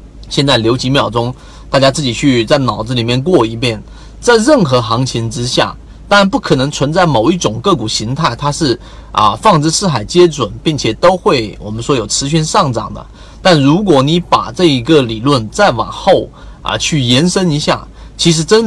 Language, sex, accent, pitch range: Chinese, male, native, 120-180 Hz